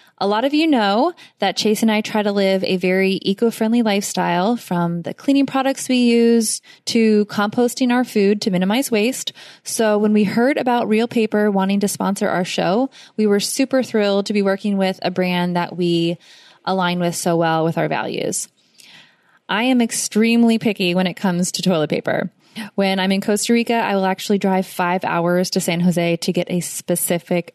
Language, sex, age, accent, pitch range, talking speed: English, female, 20-39, American, 180-230 Hz, 190 wpm